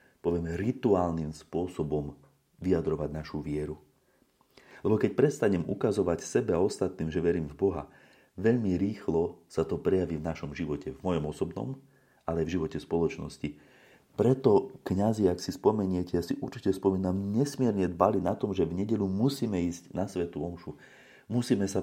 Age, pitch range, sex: 30-49, 85-100 Hz, male